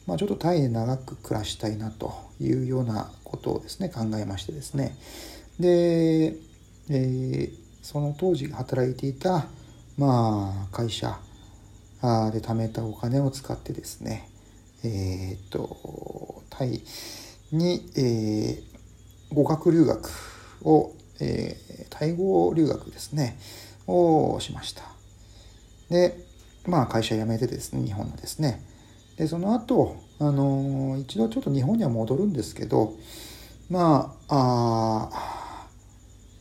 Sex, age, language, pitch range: male, 40-59, Japanese, 110-155 Hz